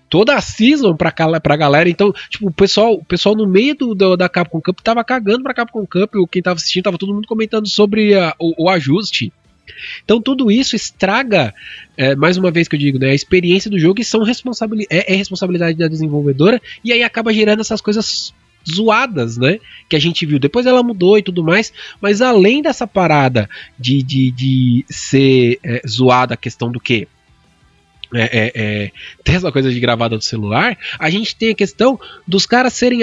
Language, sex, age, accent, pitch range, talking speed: Portuguese, male, 20-39, Brazilian, 140-220 Hz, 200 wpm